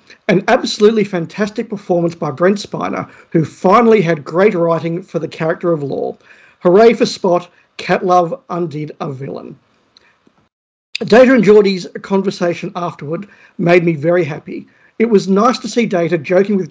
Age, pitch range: 50-69, 170-210 Hz